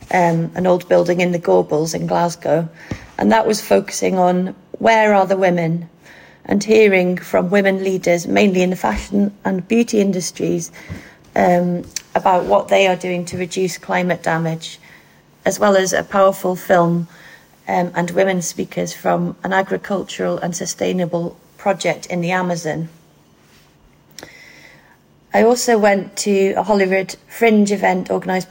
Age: 30-49